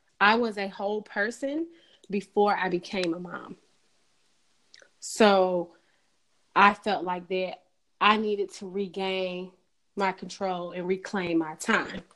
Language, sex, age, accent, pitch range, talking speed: English, female, 30-49, American, 185-225 Hz, 125 wpm